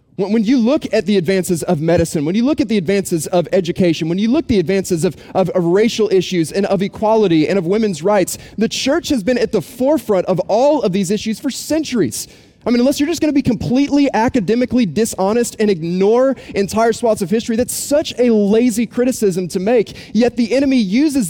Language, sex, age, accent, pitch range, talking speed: English, male, 30-49, American, 175-235 Hz, 215 wpm